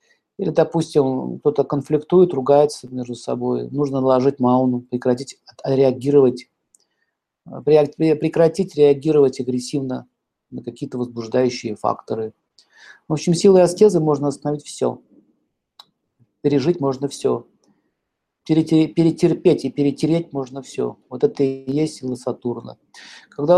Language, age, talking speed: Russian, 50-69, 105 wpm